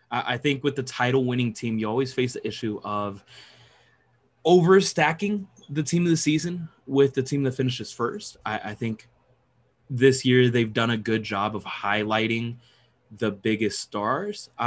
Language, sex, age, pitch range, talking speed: English, male, 20-39, 110-135 Hz, 165 wpm